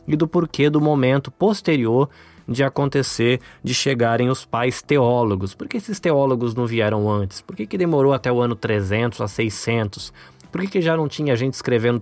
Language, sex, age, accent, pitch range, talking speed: Portuguese, male, 20-39, Brazilian, 105-140 Hz, 190 wpm